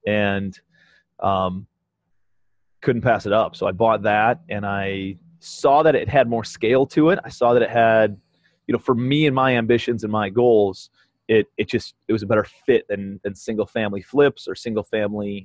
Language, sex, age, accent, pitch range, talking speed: English, male, 30-49, American, 95-115 Hz, 200 wpm